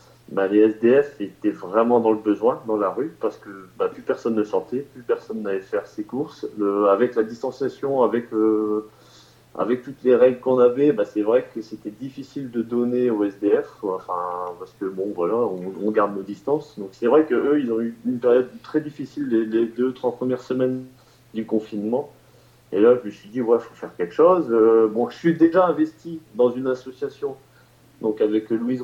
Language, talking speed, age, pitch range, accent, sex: French, 205 wpm, 30-49, 110-145 Hz, French, male